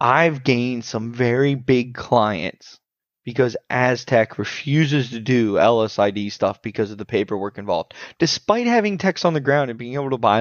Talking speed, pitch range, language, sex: 165 wpm, 110-140 Hz, English, male